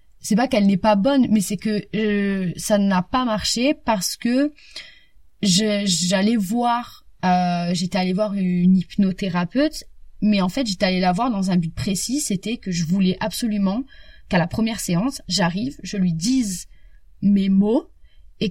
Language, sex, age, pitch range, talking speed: French, female, 20-39, 185-250 Hz, 170 wpm